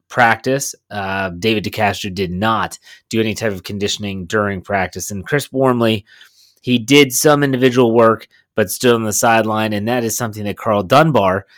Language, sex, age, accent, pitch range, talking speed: English, male, 30-49, American, 105-120 Hz, 170 wpm